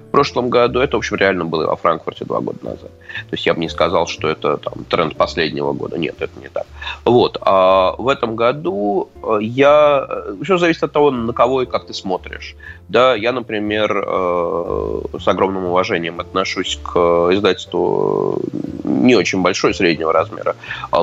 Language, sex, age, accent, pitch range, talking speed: Russian, male, 20-39, native, 100-145 Hz, 165 wpm